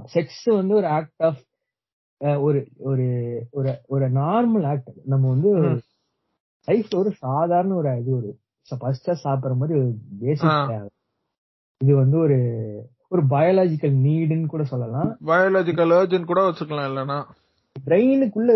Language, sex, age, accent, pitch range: Tamil, male, 20-39, native, 125-165 Hz